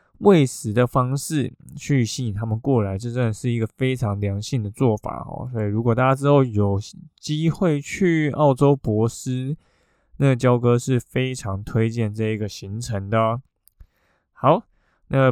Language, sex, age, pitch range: Chinese, male, 20-39, 110-140 Hz